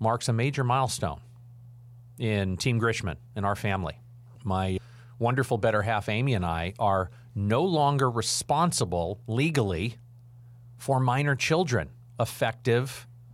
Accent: American